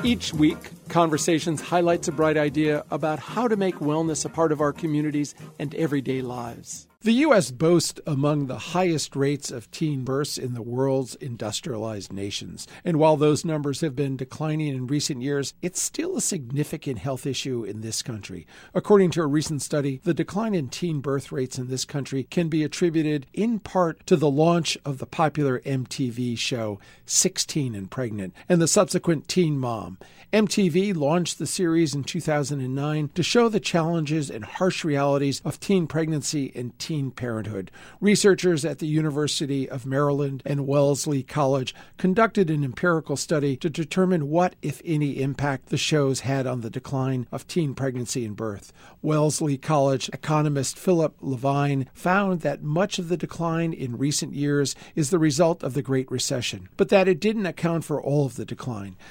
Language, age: English, 50-69